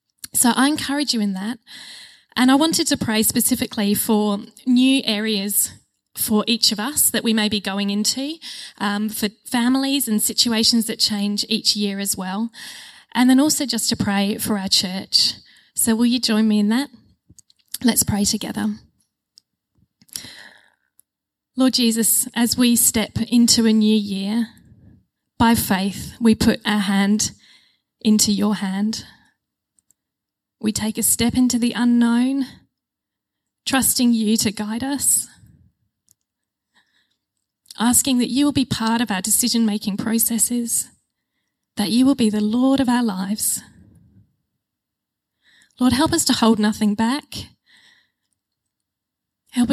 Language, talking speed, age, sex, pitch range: English, 135 wpm, 10-29, female, 215-250 Hz